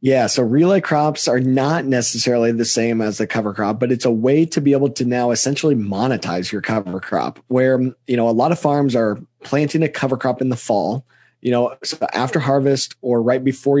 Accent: American